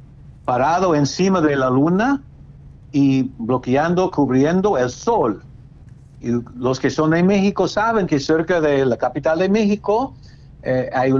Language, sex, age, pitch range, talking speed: Spanish, male, 60-79, 125-160 Hz, 145 wpm